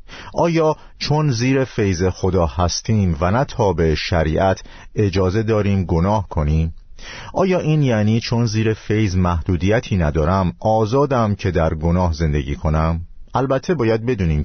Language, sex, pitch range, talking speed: Persian, male, 85-115 Hz, 135 wpm